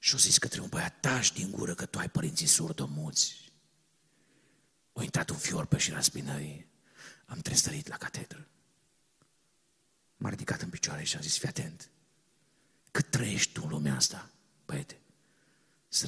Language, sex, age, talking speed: Romanian, male, 50-69, 155 wpm